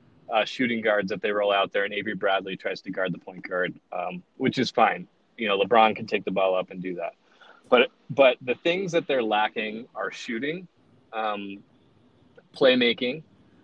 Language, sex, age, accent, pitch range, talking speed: English, male, 30-49, American, 110-135 Hz, 190 wpm